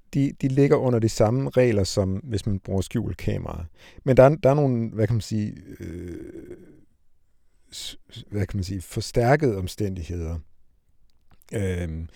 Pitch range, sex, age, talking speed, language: 90-125 Hz, male, 60-79, 140 wpm, Danish